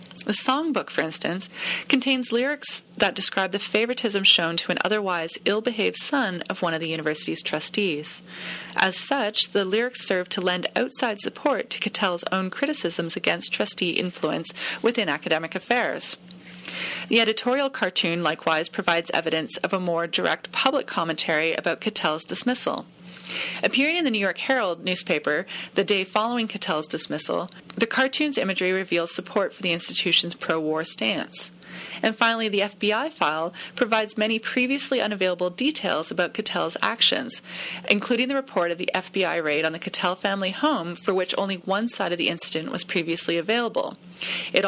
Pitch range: 170-225 Hz